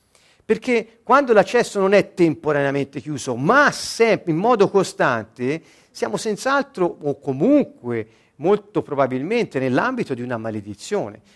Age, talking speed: 50-69, 115 wpm